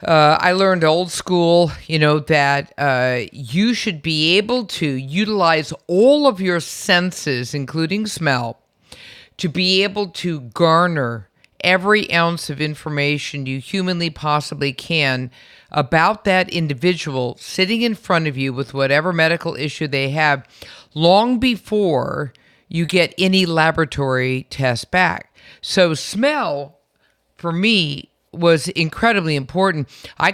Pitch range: 140-180 Hz